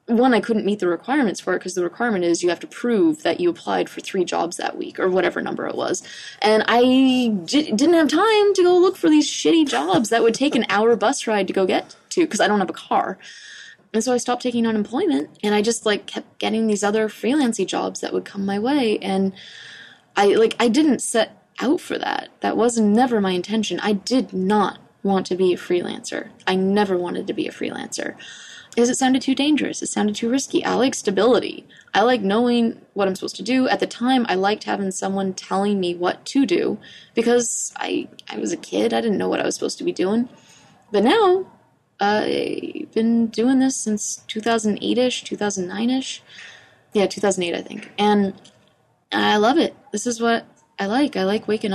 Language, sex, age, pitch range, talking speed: English, female, 20-39, 200-260 Hz, 210 wpm